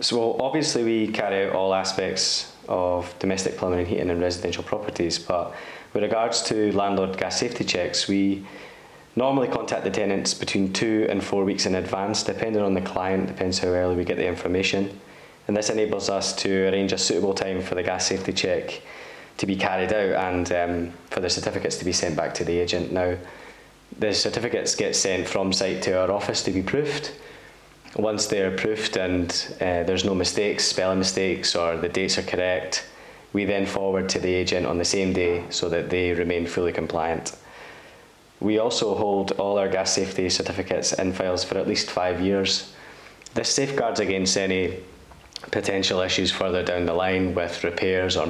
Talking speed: 185 wpm